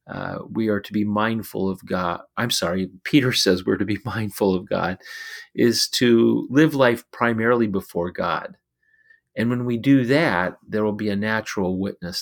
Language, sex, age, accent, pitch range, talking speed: English, male, 40-59, American, 100-145 Hz, 175 wpm